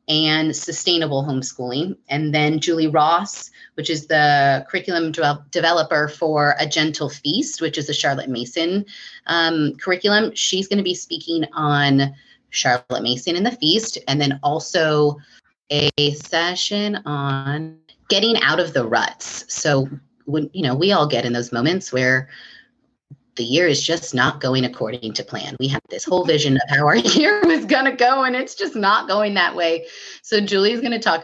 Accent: American